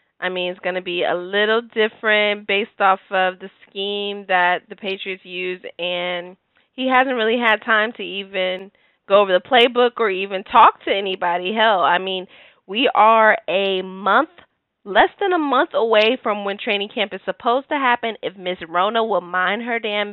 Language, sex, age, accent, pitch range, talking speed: English, female, 20-39, American, 195-260 Hz, 185 wpm